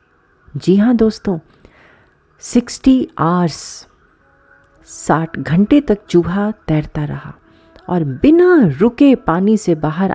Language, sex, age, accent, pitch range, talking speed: Hindi, female, 40-59, native, 155-230 Hz, 100 wpm